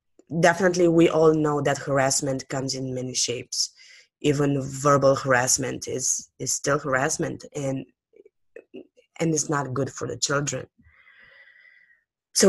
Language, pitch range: English, 140-185 Hz